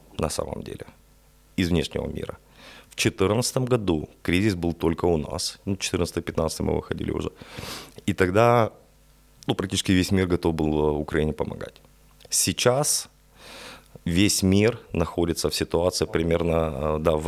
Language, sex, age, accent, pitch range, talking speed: Russian, male, 30-49, native, 80-100 Hz, 130 wpm